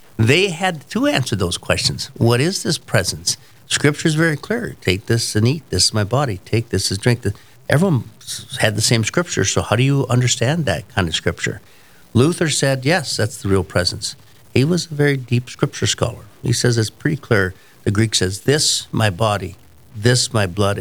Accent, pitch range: American, 100-130 Hz